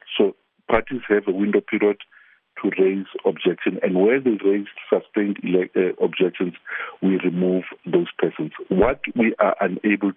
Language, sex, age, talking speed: English, male, 50-69, 150 wpm